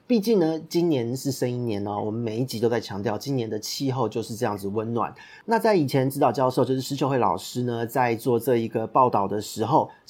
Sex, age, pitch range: male, 30-49, 115-150 Hz